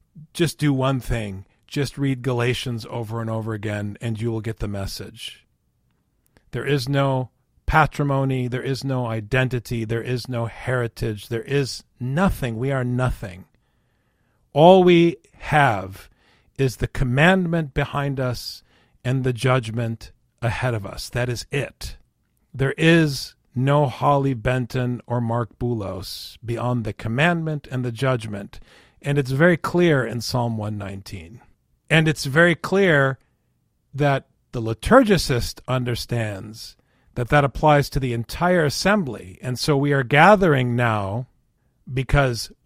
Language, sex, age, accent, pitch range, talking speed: English, male, 40-59, American, 115-145 Hz, 135 wpm